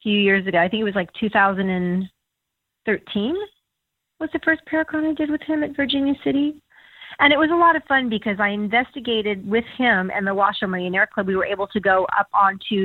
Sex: female